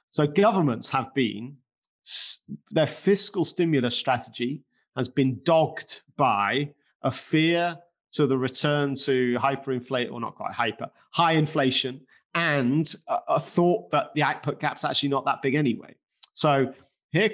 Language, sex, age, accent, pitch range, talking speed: English, male, 30-49, British, 130-170 Hz, 135 wpm